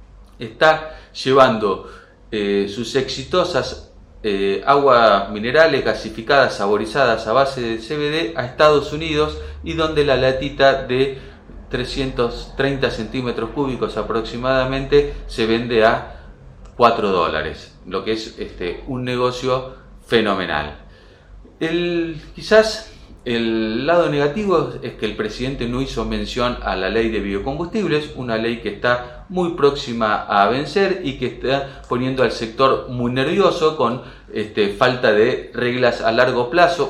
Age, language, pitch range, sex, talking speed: 40-59, Spanish, 110-135 Hz, male, 125 wpm